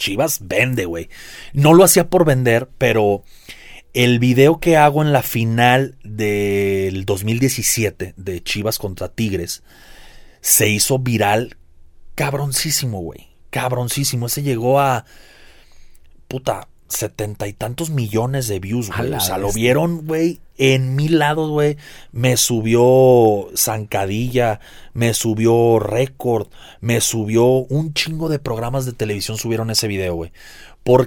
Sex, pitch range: male, 105-130 Hz